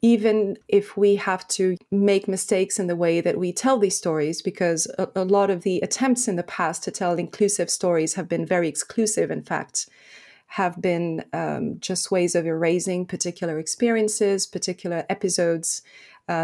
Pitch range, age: 175-200 Hz, 30-49